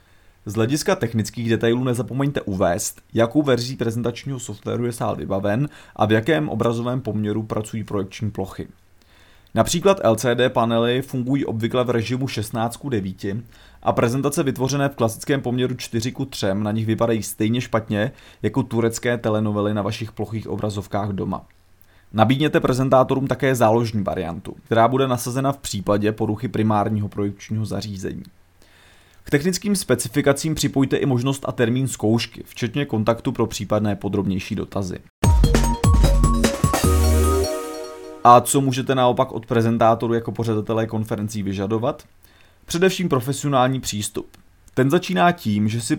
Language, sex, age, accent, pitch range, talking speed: Czech, male, 30-49, native, 100-130 Hz, 125 wpm